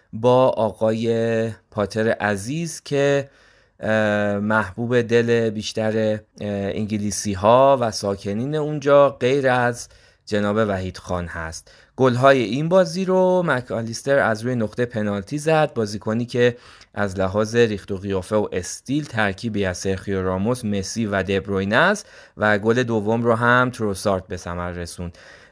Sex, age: male, 20-39